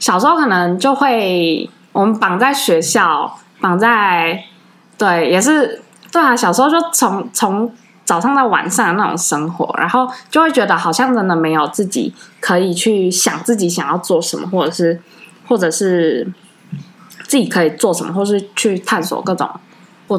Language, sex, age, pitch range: Chinese, female, 20-39, 175-260 Hz